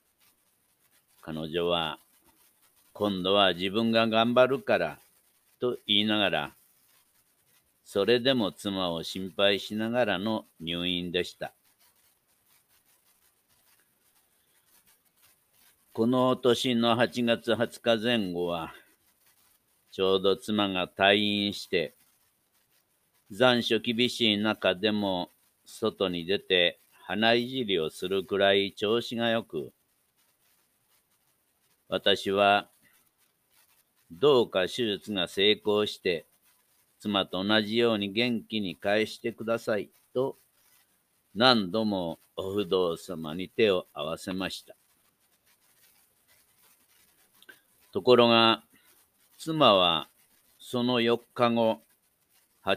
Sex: male